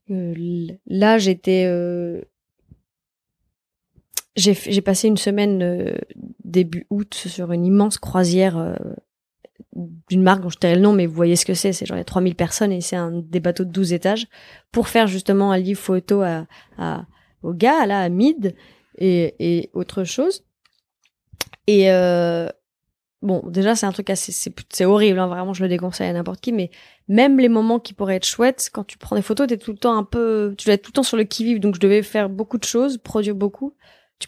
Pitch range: 185-225 Hz